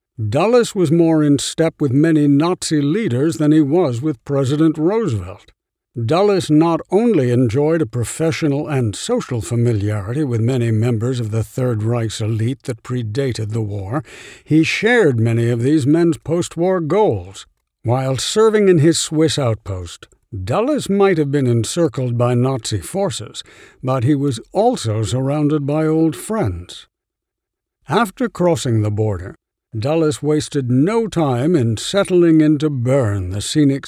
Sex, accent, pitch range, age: male, American, 115-155 Hz, 60-79